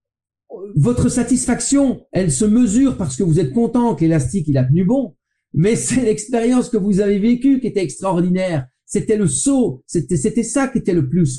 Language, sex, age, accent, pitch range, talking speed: French, male, 50-69, French, 135-215 Hz, 190 wpm